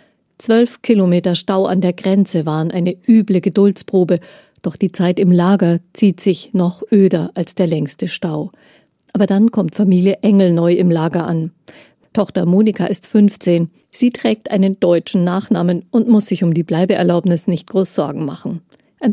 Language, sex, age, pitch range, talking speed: German, female, 50-69, 175-205 Hz, 165 wpm